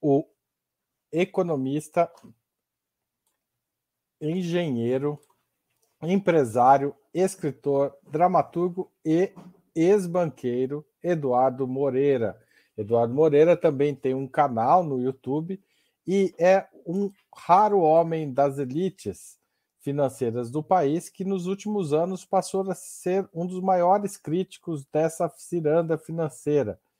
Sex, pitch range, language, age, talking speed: male, 135-175 Hz, Portuguese, 50-69, 95 wpm